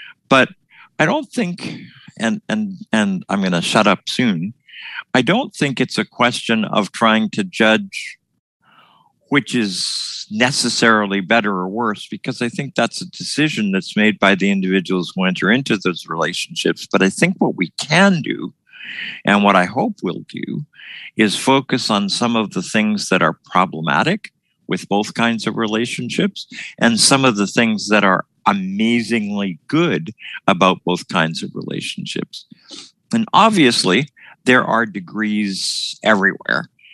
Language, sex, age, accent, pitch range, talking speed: English, male, 50-69, American, 95-130 Hz, 150 wpm